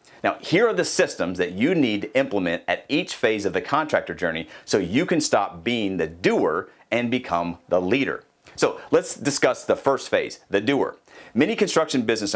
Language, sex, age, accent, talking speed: English, male, 40-59, American, 190 wpm